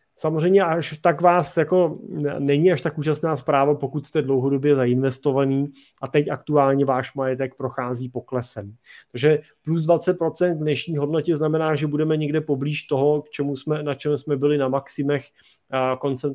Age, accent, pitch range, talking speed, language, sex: 30-49, native, 135-160 Hz, 160 wpm, Czech, male